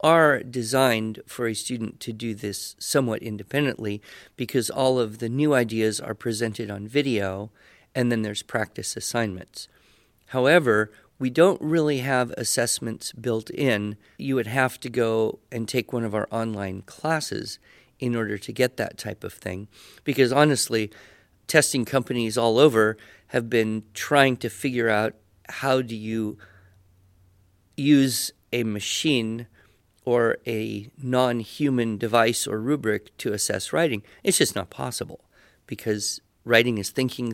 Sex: male